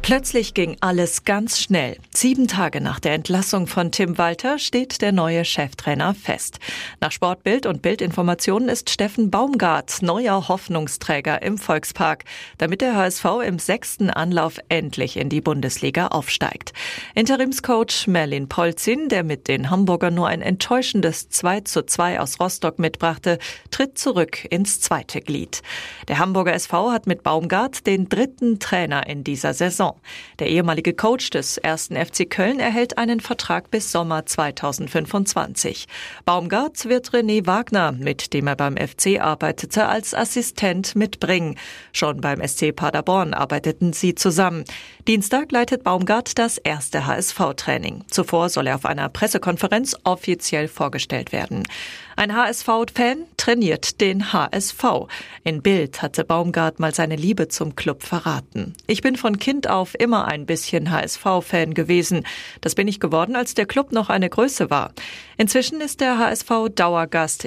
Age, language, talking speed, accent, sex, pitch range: 40-59, German, 145 wpm, German, female, 165-225 Hz